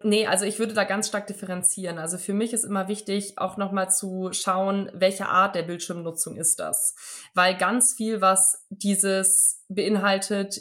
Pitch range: 185-210 Hz